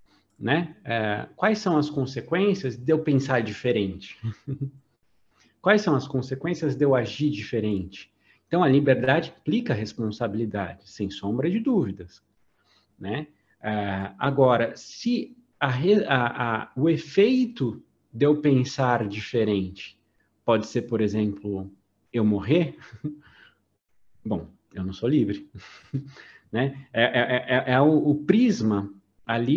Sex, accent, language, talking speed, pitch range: male, Brazilian, Portuguese, 120 wpm, 105-155 Hz